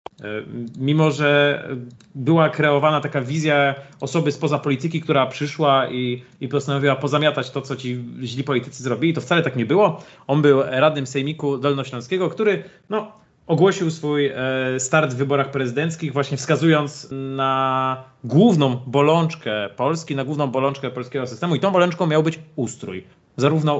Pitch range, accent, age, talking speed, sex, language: 130-155 Hz, native, 30-49, 140 wpm, male, Polish